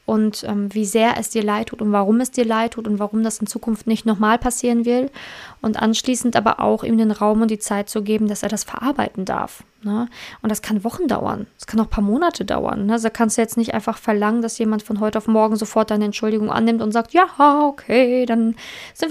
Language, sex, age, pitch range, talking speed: German, female, 20-39, 215-245 Hz, 235 wpm